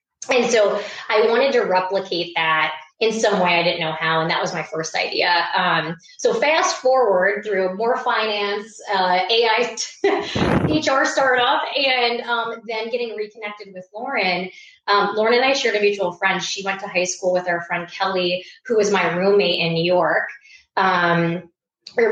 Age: 20-39